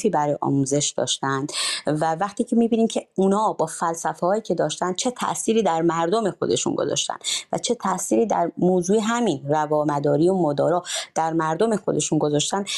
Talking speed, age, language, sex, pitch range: 160 wpm, 30-49, English, female, 150-190 Hz